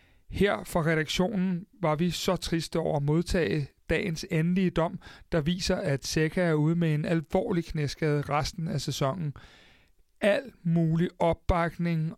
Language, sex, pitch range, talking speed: Danish, male, 140-180 Hz, 145 wpm